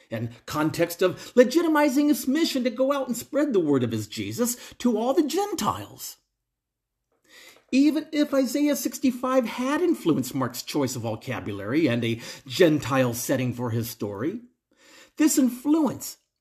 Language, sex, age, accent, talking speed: English, male, 50-69, American, 145 wpm